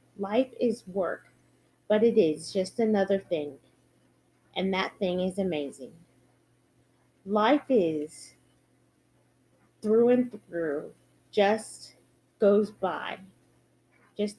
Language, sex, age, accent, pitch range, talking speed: English, female, 30-49, American, 175-245 Hz, 95 wpm